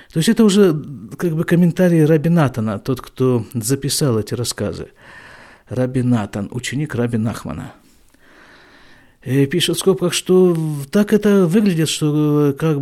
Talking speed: 135 wpm